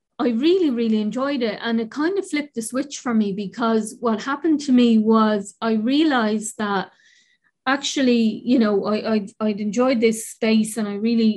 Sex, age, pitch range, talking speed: female, 20-39, 215-245 Hz, 190 wpm